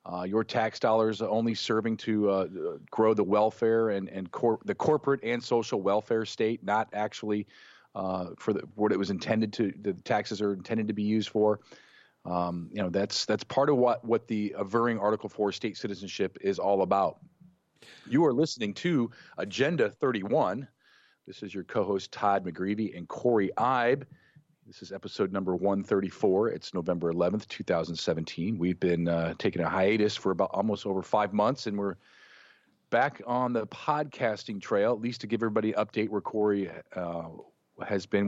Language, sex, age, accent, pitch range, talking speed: English, male, 40-59, American, 95-110 Hz, 180 wpm